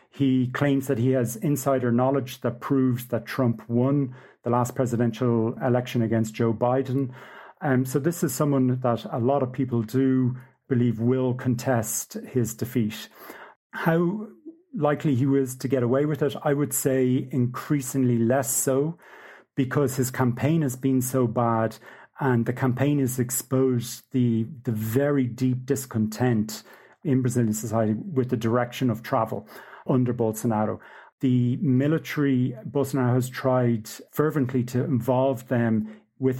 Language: English